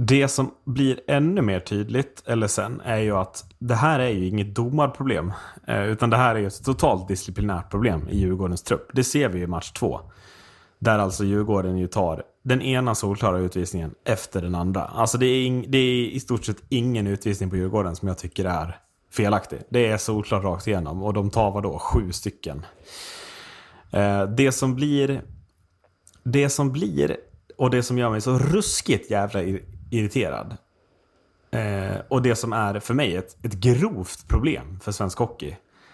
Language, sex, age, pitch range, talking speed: Swedish, male, 30-49, 95-125 Hz, 180 wpm